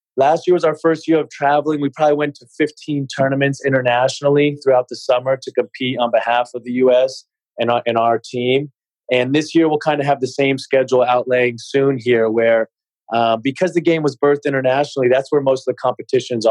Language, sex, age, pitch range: English, male, 30-49, 125-150 Hz